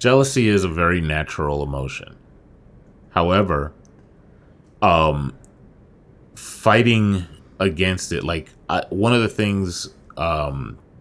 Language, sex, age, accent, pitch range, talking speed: English, male, 30-49, American, 75-100 Hz, 95 wpm